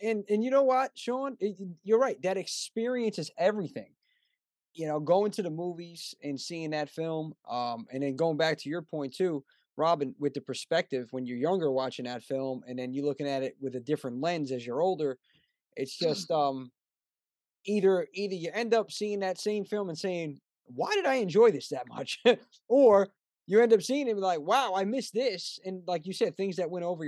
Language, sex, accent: English, male, American